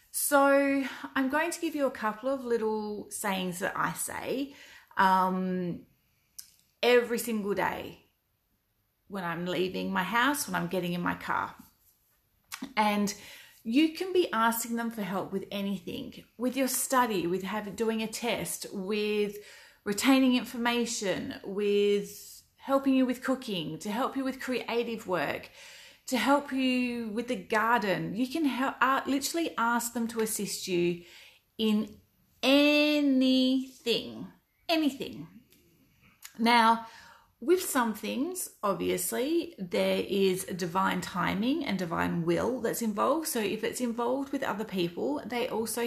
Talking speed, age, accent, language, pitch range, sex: 130 wpm, 30-49, Australian, English, 200-265 Hz, female